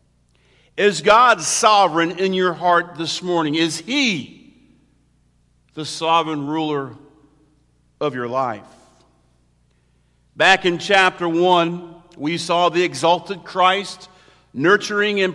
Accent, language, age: American, English, 50-69